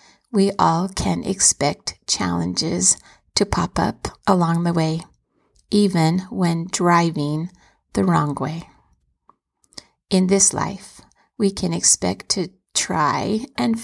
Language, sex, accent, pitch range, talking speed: English, female, American, 165-195 Hz, 115 wpm